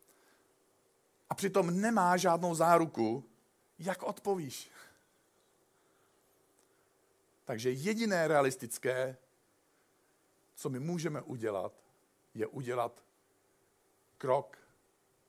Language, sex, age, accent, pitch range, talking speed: Czech, male, 50-69, native, 120-170 Hz, 65 wpm